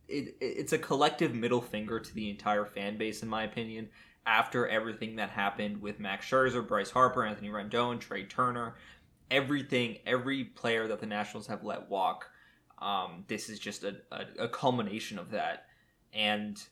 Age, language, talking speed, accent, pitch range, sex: 20-39, English, 170 wpm, American, 105-130 Hz, male